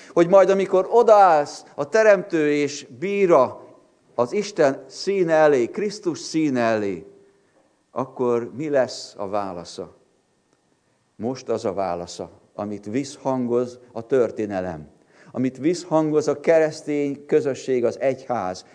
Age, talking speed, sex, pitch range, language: 50-69, 110 wpm, male, 140-215 Hz, Hungarian